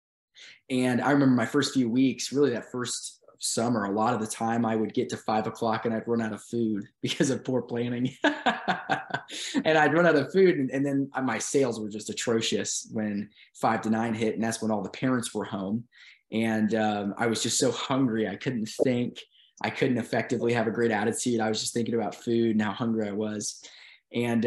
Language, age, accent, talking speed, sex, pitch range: English, 20-39, American, 215 wpm, male, 105-120 Hz